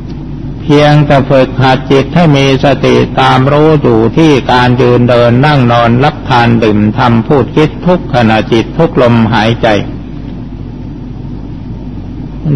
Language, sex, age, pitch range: Thai, male, 60-79, 125-145 Hz